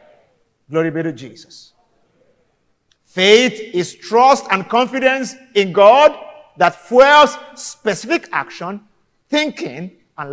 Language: English